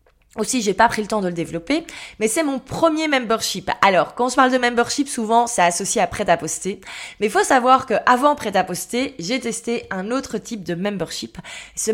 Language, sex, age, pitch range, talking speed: French, female, 20-39, 205-265 Hz, 220 wpm